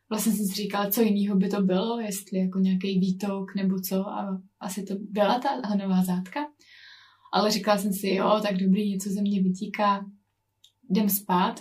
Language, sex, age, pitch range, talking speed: Czech, female, 20-39, 195-245 Hz, 175 wpm